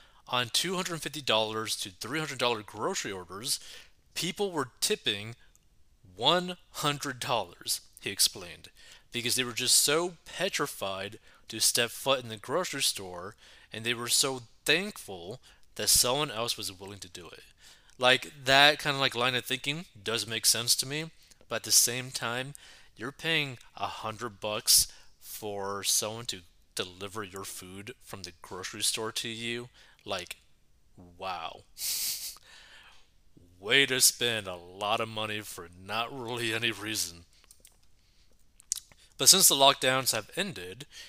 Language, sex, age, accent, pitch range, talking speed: English, male, 30-49, American, 105-135 Hz, 150 wpm